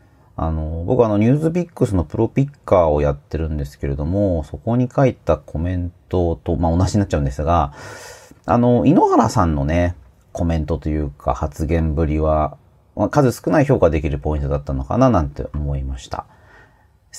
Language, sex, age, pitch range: Japanese, male, 40-59, 75-100 Hz